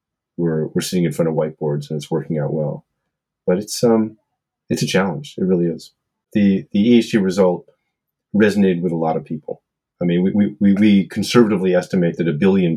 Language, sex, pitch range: English, male, 85-105 Hz